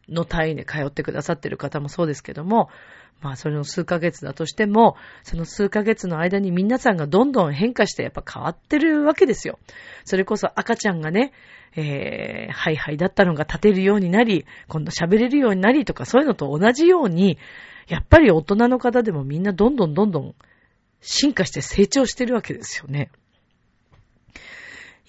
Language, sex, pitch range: Japanese, female, 155-240 Hz